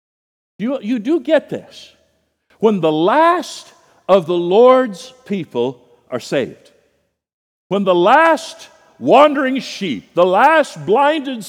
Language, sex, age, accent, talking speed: English, male, 60-79, American, 115 wpm